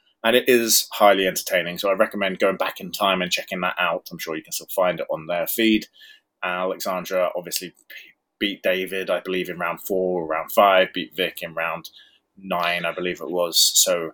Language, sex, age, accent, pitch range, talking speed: English, male, 30-49, British, 100-125 Hz, 200 wpm